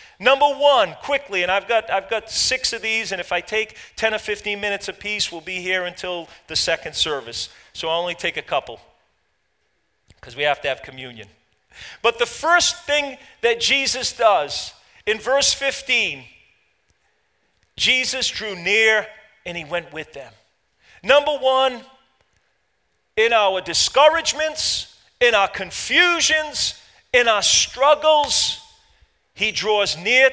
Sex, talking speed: male, 140 wpm